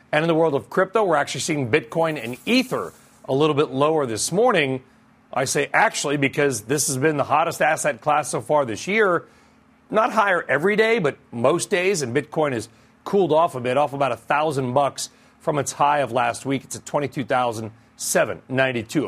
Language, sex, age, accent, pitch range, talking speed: English, male, 40-59, American, 130-160 Hz, 190 wpm